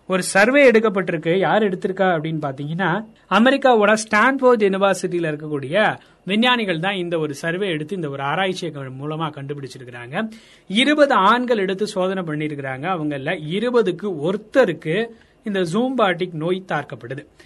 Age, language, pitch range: 30-49, Tamil, 155-220 Hz